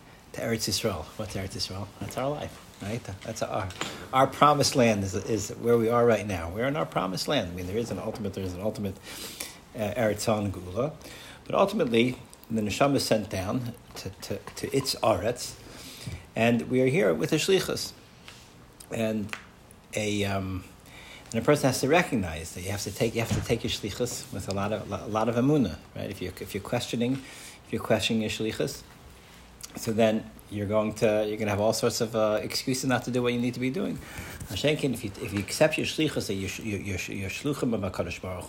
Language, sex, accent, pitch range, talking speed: English, male, American, 100-125 Hz, 205 wpm